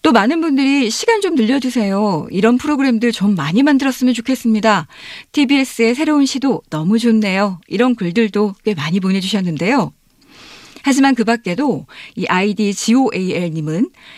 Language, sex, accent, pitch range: Korean, female, native, 190-255 Hz